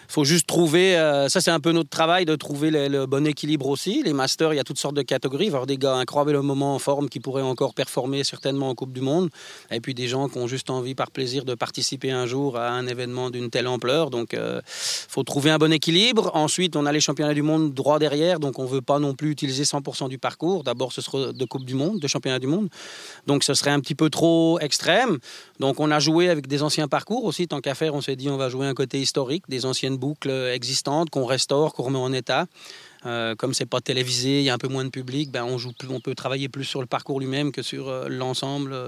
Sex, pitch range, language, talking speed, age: male, 130-155 Hz, French, 260 wpm, 40-59